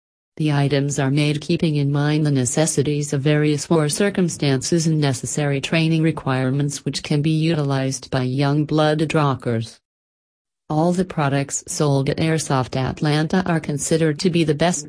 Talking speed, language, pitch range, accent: 155 wpm, English, 135-160 Hz, American